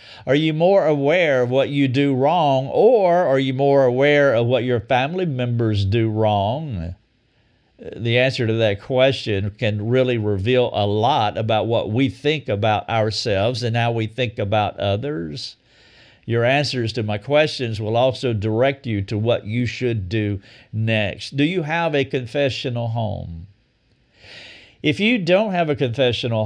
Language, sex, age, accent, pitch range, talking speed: English, male, 50-69, American, 110-140 Hz, 160 wpm